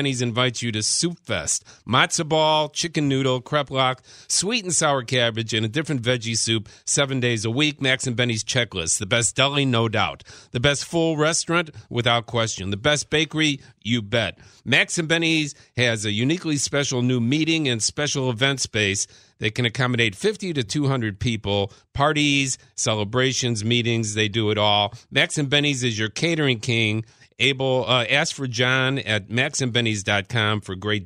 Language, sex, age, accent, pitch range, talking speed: English, male, 50-69, American, 110-140 Hz, 170 wpm